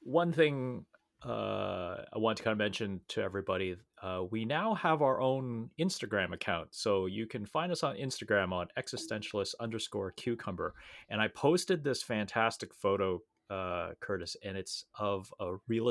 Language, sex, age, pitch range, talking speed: English, male, 30-49, 95-120 Hz, 160 wpm